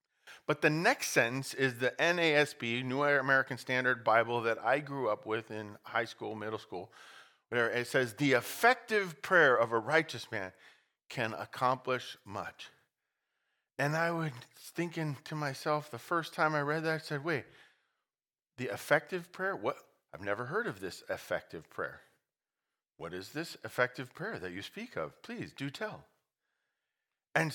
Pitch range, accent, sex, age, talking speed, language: 120-155 Hz, American, male, 40-59, 155 wpm, English